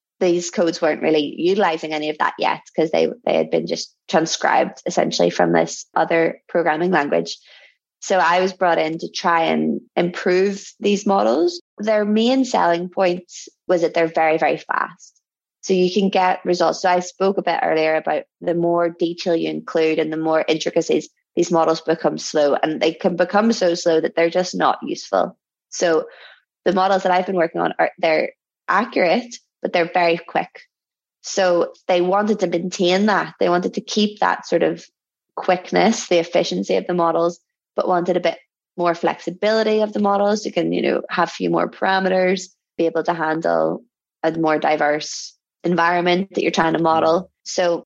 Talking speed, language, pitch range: 180 wpm, English, 165-185 Hz